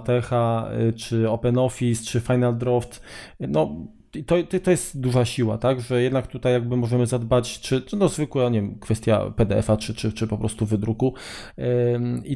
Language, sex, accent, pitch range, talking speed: Polish, male, native, 110-130 Hz, 165 wpm